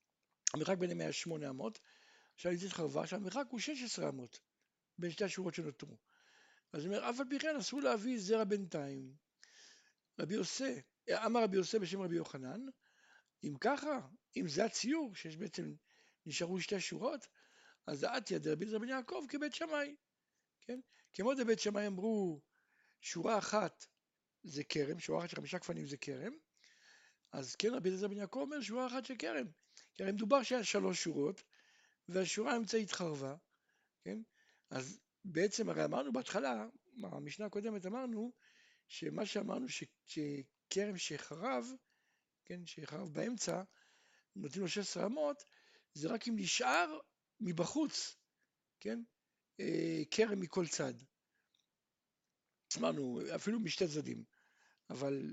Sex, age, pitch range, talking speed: male, 60-79, 175-265 Hz, 130 wpm